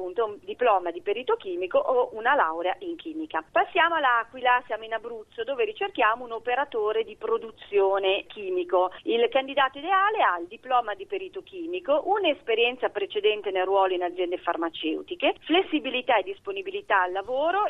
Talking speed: 145 wpm